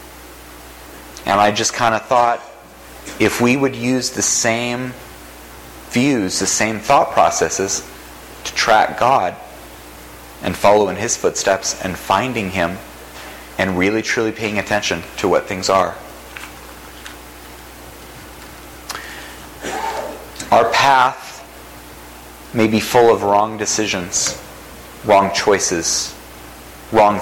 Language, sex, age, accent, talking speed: English, male, 30-49, American, 105 wpm